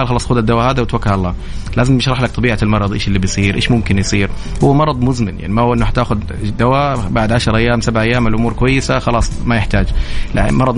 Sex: male